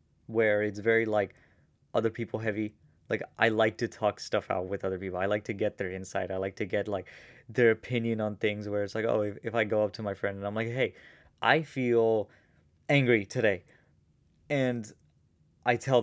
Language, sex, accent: English, male, American